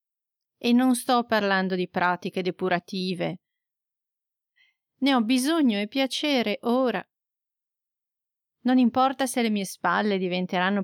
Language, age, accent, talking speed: Italian, 30-49, native, 110 wpm